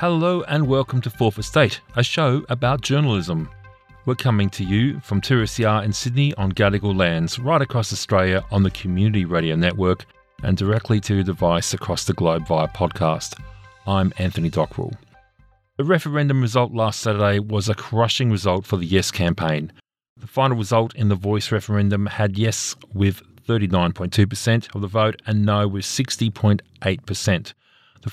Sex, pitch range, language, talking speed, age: male, 95-120 Hz, English, 160 wpm, 40-59